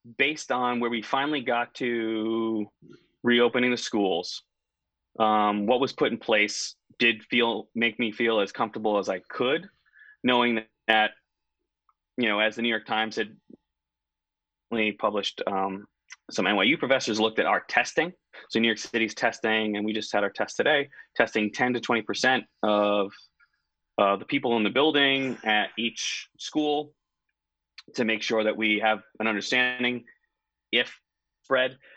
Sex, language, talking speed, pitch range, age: male, English, 155 wpm, 105-125 Hz, 20-39